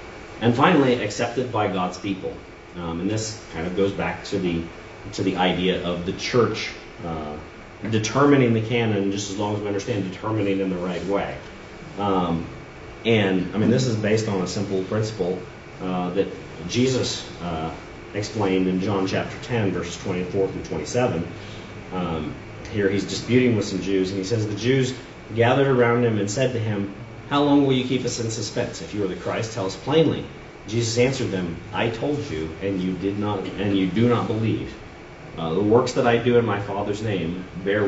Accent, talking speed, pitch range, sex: American, 190 wpm, 95-115 Hz, male